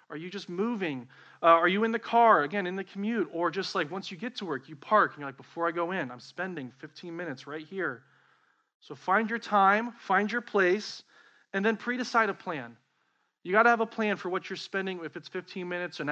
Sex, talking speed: male, 235 wpm